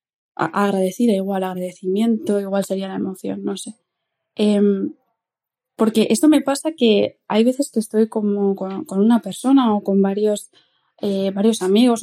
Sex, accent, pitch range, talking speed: female, Spanish, 200-245 Hz, 150 wpm